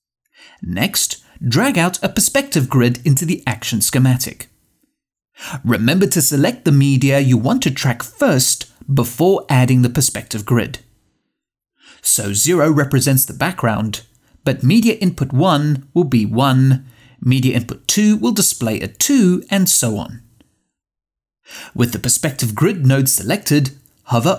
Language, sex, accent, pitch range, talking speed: English, male, British, 120-180 Hz, 135 wpm